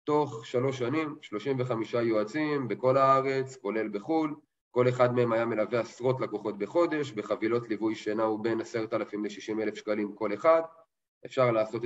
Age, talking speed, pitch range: 30-49, 155 wpm, 105-130 Hz